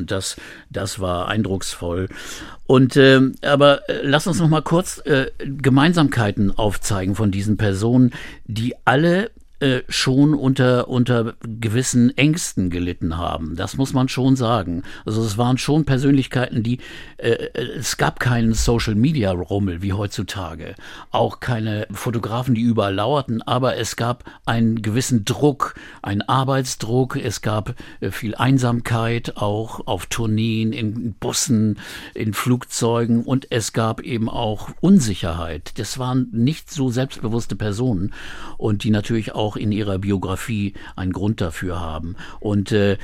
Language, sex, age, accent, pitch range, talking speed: German, male, 50-69, German, 100-125 Hz, 130 wpm